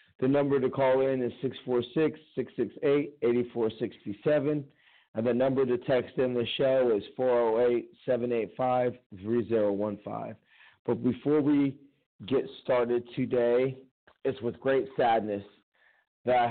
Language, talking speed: English, 105 wpm